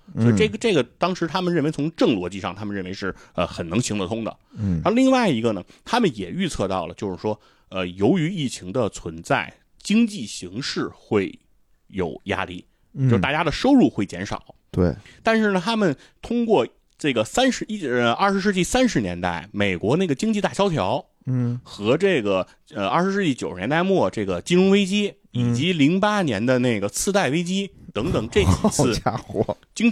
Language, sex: Chinese, male